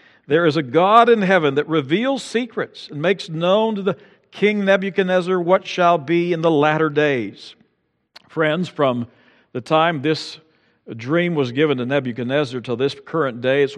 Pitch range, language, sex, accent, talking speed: 135-170 Hz, English, male, American, 165 wpm